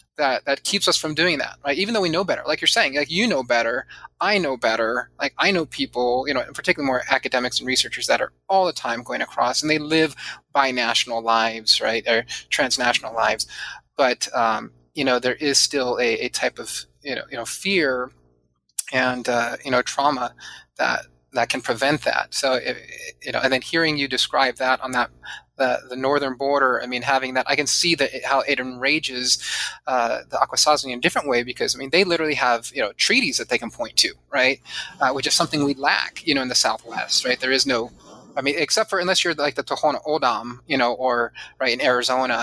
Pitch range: 125-145 Hz